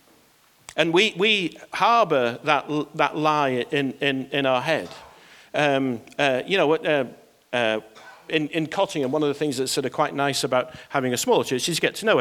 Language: English